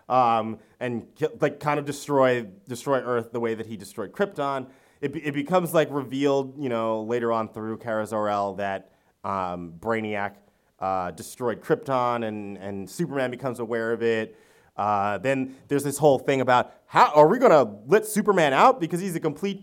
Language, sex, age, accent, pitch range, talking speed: English, male, 30-49, American, 110-140 Hz, 180 wpm